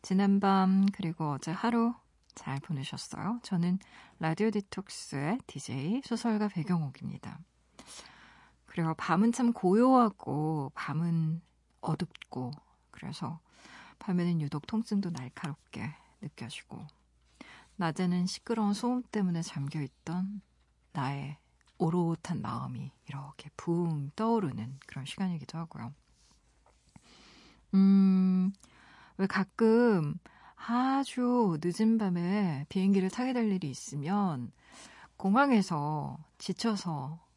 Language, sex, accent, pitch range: Korean, female, native, 150-200 Hz